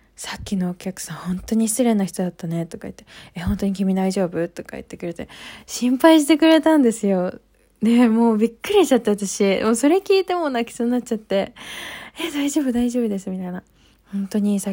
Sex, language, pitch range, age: female, Japanese, 180-230 Hz, 20-39